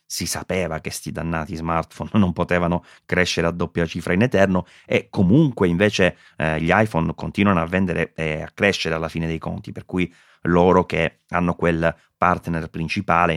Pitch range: 80-100 Hz